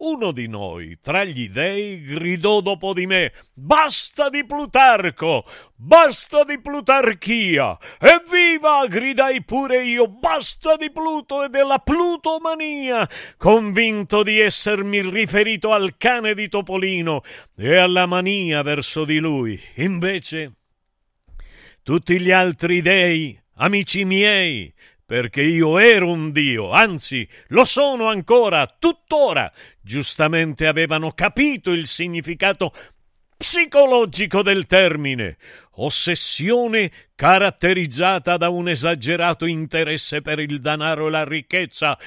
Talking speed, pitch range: 110 wpm, 165-265 Hz